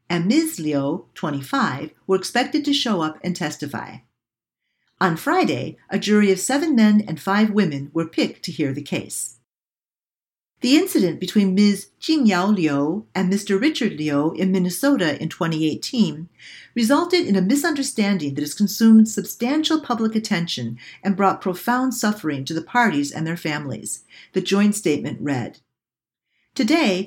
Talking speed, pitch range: 145 wpm, 165-245 Hz